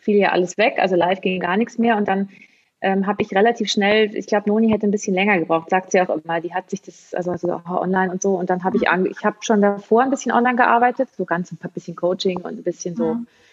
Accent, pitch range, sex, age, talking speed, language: German, 185-215 Hz, female, 30-49, 265 wpm, German